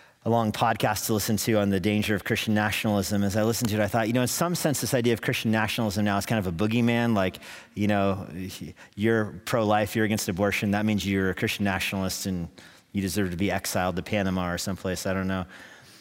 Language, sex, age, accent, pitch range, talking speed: English, male, 40-59, American, 100-130 Hz, 230 wpm